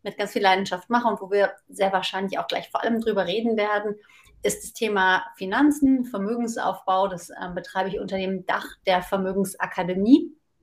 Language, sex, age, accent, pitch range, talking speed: German, female, 30-49, German, 195-230 Hz, 175 wpm